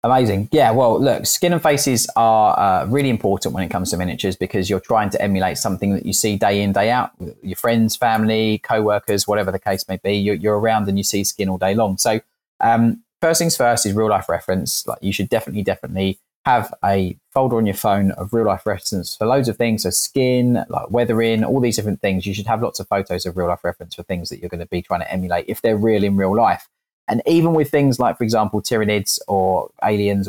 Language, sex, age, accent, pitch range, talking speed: English, male, 20-39, British, 95-115 Hz, 240 wpm